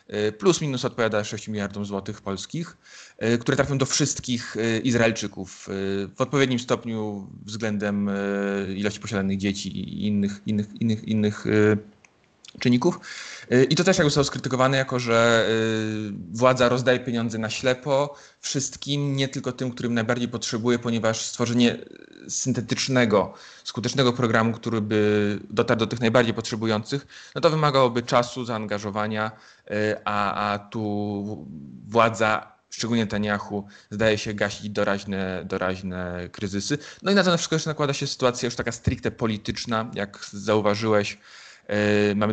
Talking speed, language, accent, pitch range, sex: 125 wpm, Polish, native, 105-125 Hz, male